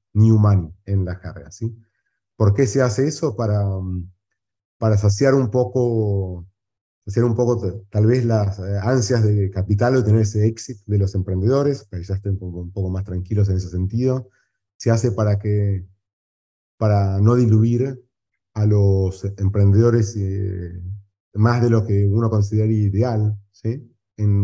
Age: 30-49